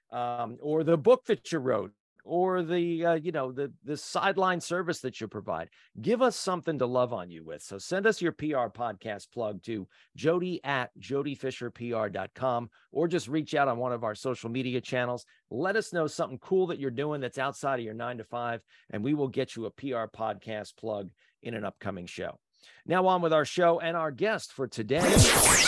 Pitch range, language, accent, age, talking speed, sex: 120-160 Hz, English, American, 40-59, 205 wpm, male